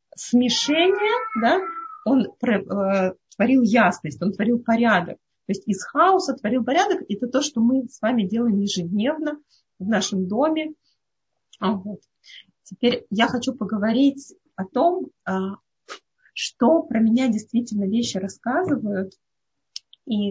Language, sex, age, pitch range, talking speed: Russian, female, 30-49, 205-265 Hz, 125 wpm